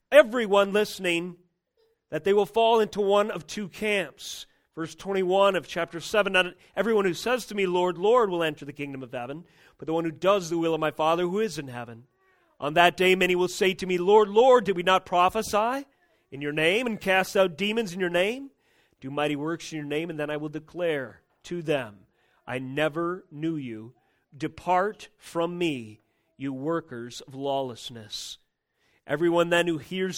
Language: English